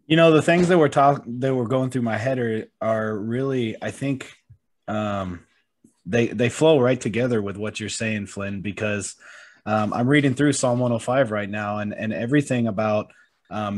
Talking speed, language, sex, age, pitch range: 185 wpm, English, male, 20-39, 105-125 Hz